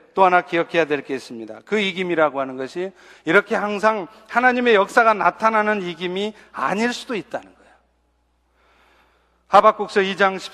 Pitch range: 180-235 Hz